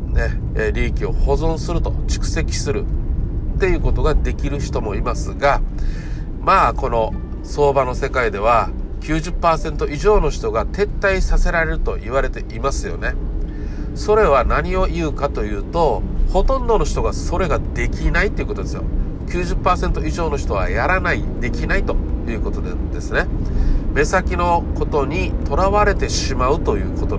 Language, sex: Japanese, male